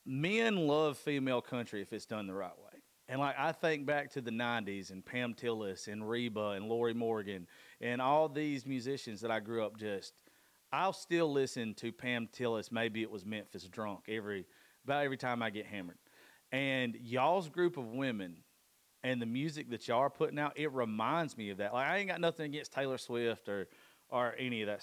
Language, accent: English, American